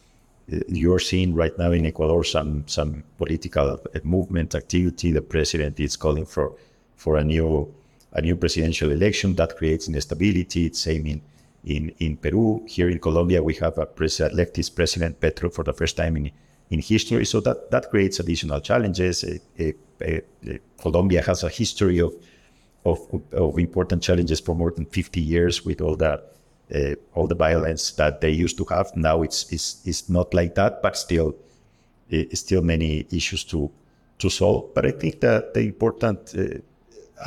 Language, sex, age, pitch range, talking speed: English, male, 50-69, 80-90 Hz, 170 wpm